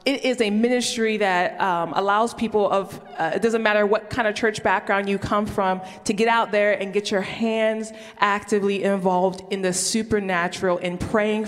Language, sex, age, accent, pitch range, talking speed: English, female, 20-39, American, 190-225 Hz, 190 wpm